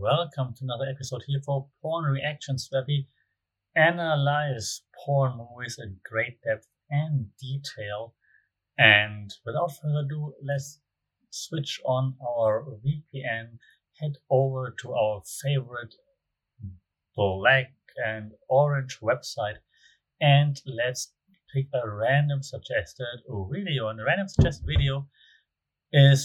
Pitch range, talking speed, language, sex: 110-145 Hz, 110 wpm, English, male